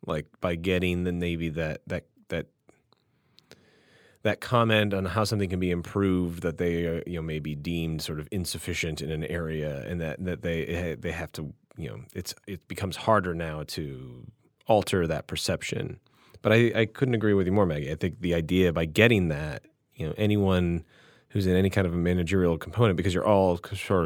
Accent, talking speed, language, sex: American, 195 wpm, English, male